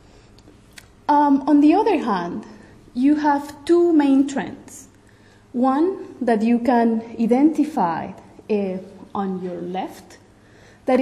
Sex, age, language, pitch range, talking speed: female, 30-49, English, 200-250 Hz, 110 wpm